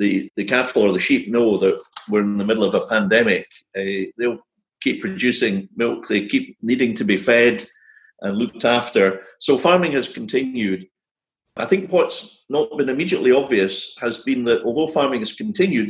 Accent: British